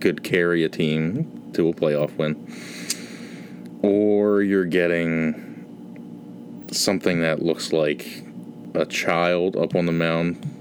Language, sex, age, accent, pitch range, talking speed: English, male, 30-49, American, 75-95 Hz, 120 wpm